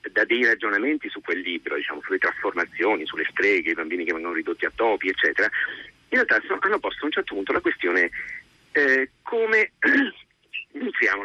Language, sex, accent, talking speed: Italian, male, native, 175 wpm